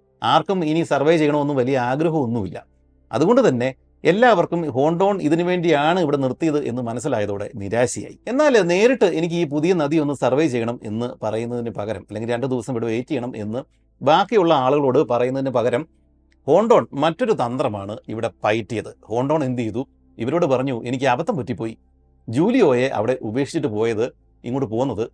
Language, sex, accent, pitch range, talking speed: Malayalam, male, native, 110-155 Hz, 140 wpm